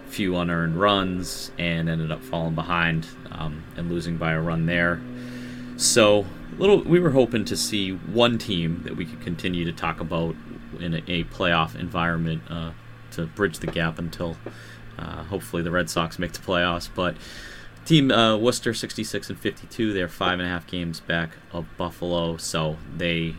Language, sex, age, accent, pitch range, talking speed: English, male, 30-49, American, 80-100 Hz, 175 wpm